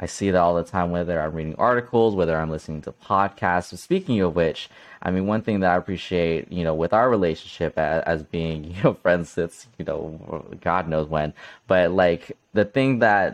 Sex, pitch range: male, 85-95 Hz